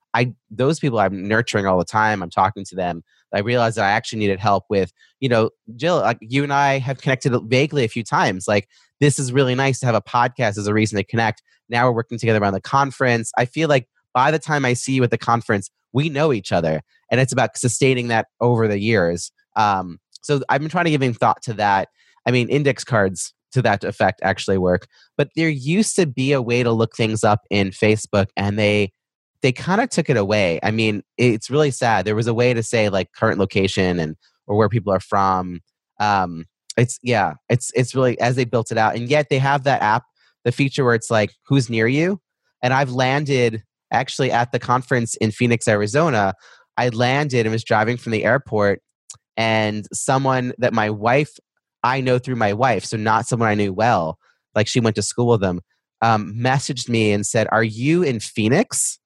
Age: 30-49